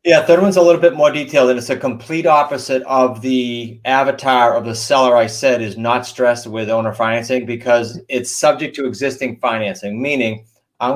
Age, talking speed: 30-49, 190 wpm